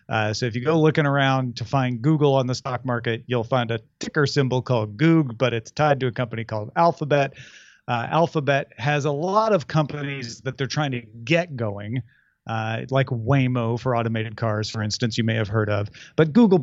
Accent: American